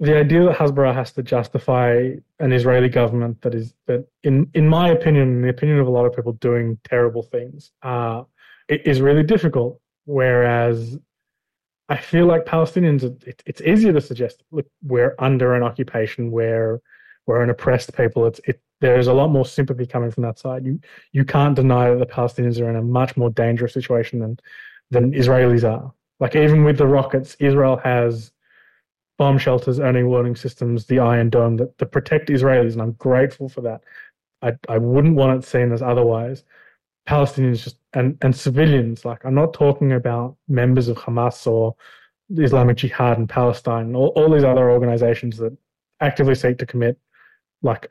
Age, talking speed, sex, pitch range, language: 20-39, 180 wpm, male, 120-140 Hz, Hebrew